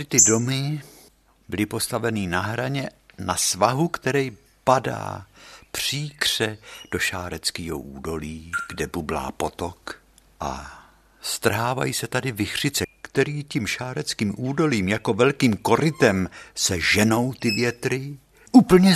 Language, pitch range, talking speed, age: Czech, 95-165 Hz, 110 wpm, 60-79